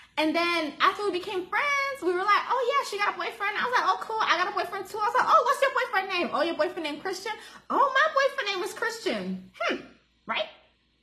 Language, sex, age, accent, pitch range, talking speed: English, female, 20-39, American, 255-360 Hz, 250 wpm